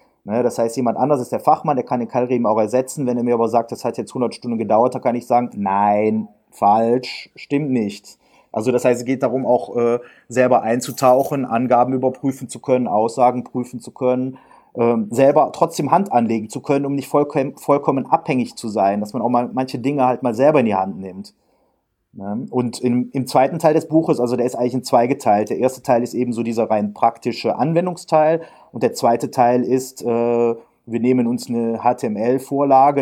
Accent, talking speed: German, 205 wpm